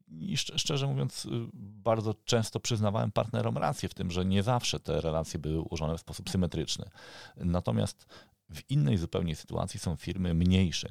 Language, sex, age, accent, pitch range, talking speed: Polish, male, 40-59, native, 75-105 Hz, 155 wpm